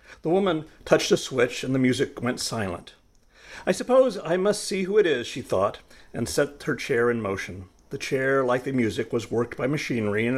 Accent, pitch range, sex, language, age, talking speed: American, 110-155 Hz, male, English, 50-69, 210 wpm